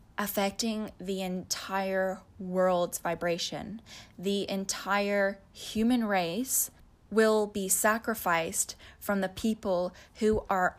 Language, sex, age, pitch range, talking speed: English, female, 10-29, 190-225 Hz, 95 wpm